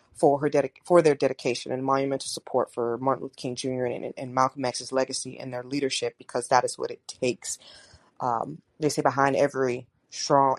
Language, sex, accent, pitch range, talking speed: English, female, American, 130-155 Hz, 195 wpm